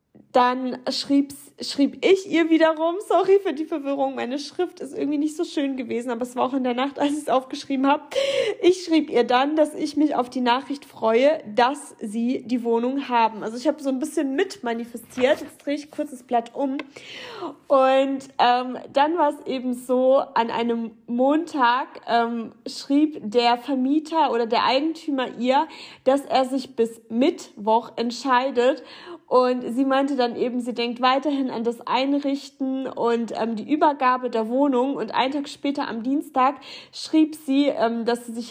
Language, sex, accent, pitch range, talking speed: German, female, German, 240-295 Hz, 175 wpm